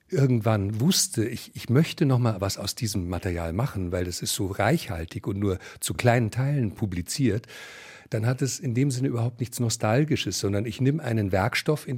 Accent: German